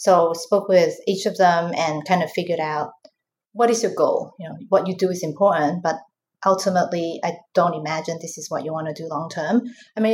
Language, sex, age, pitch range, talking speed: English, female, 30-49, 165-210 Hz, 225 wpm